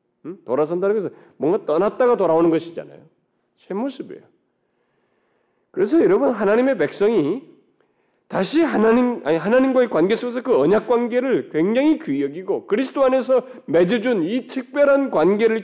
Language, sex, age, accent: Korean, male, 40-59, native